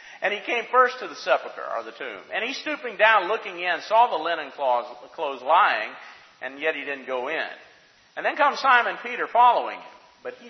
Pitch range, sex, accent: 155-230 Hz, male, American